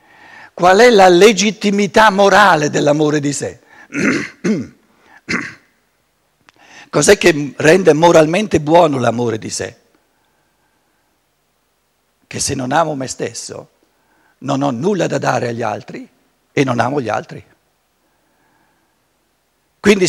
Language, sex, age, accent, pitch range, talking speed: Italian, male, 60-79, native, 140-205 Hz, 105 wpm